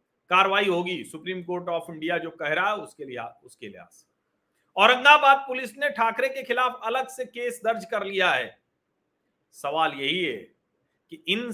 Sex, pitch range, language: male, 165-245 Hz, Hindi